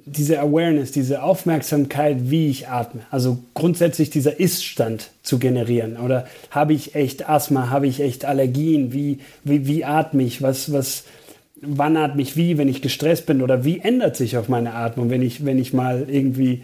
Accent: German